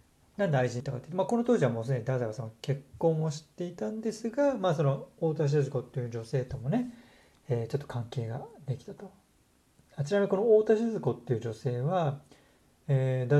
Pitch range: 125-180 Hz